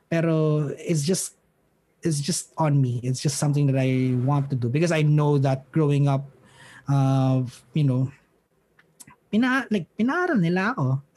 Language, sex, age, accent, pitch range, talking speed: English, male, 20-39, Filipino, 140-175 Hz, 135 wpm